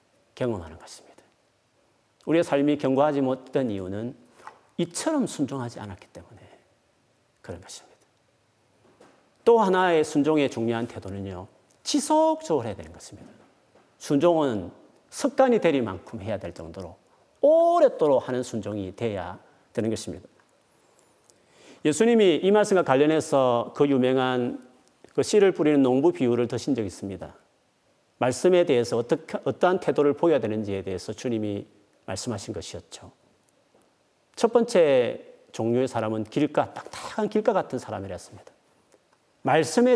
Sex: male